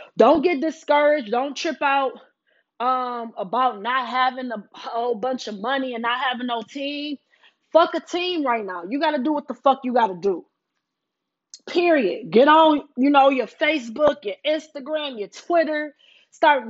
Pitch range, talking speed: 255-305 Hz, 175 wpm